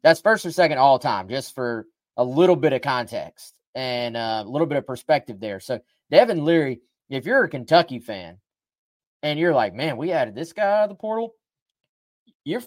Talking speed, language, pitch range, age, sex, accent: 195 wpm, English, 125-160 Hz, 20-39, male, American